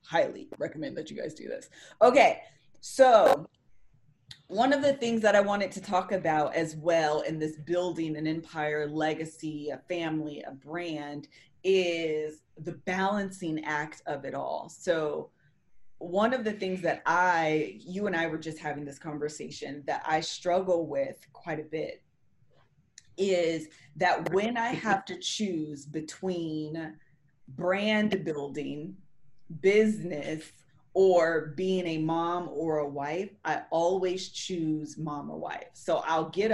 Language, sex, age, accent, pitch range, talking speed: English, female, 20-39, American, 155-185 Hz, 145 wpm